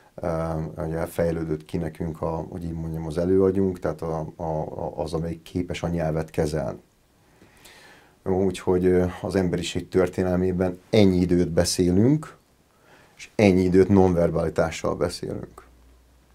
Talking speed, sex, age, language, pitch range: 115 wpm, male, 30-49, Hungarian, 85-95 Hz